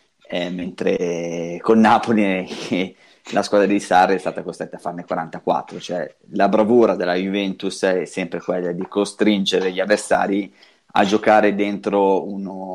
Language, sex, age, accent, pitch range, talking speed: Italian, male, 20-39, native, 90-105 Hz, 145 wpm